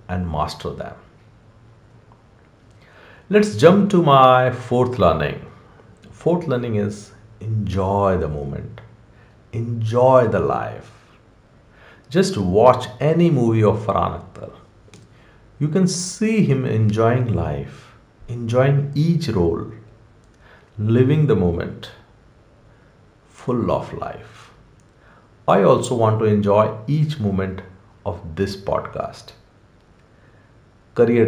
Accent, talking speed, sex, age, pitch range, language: Indian, 95 wpm, male, 50-69, 100-125 Hz, English